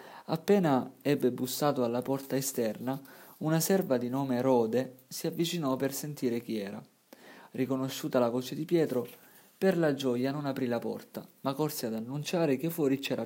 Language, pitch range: Italian, 120-150 Hz